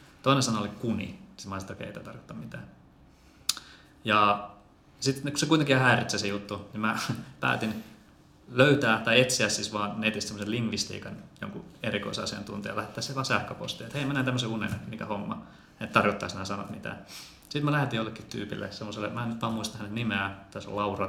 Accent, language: native, Finnish